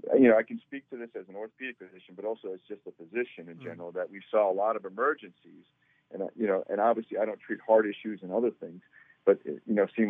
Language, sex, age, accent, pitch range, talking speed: English, male, 50-69, American, 95-120 Hz, 255 wpm